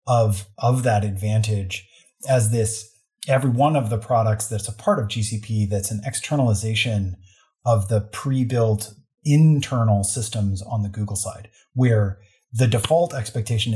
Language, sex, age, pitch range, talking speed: English, male, 30-49, 105-130 Hz, 140 wpm